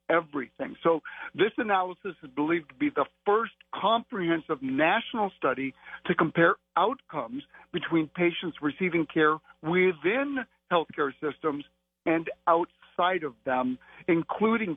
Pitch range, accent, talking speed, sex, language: 150-195 Hz, American, 115 wpm, male, English